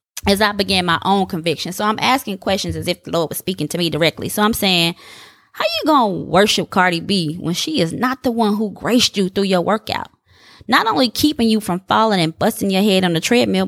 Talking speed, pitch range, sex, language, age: 235 wpm, 180-235 Hz, female, English, 20-39